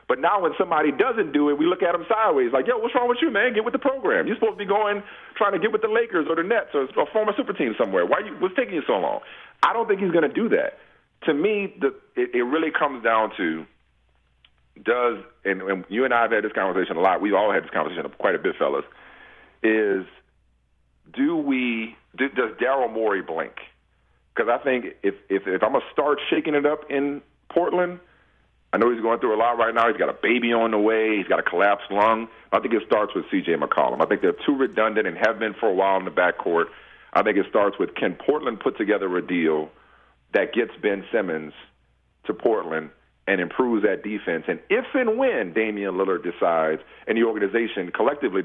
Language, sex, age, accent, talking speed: English, male, 40-59, American, 230 wpm